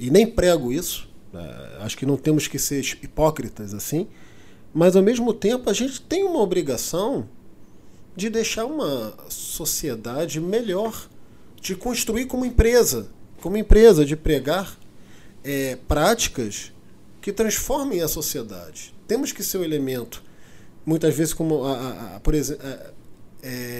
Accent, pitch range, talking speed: Brazilian, 150-225 Hz, 120 wpm